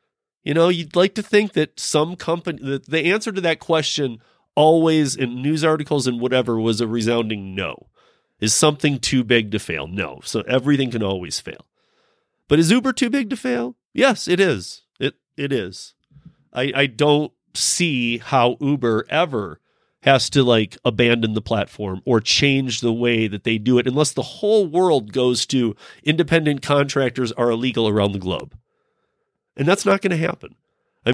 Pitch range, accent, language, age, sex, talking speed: 115-155 Hz, American, English, 30-49, male, 175 wpm